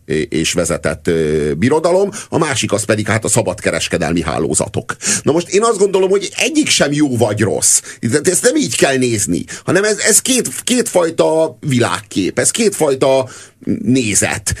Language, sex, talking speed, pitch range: Hungarian, male, 150 wpm, 110-170 Hz